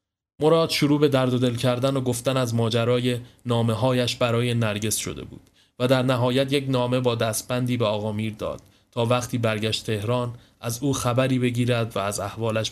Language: Persian